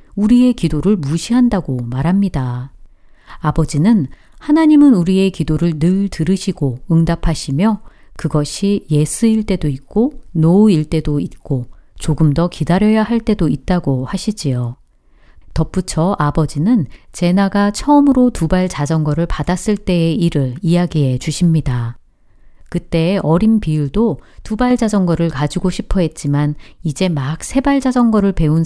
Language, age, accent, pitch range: Korean, 40-59, native, 150-215 Hz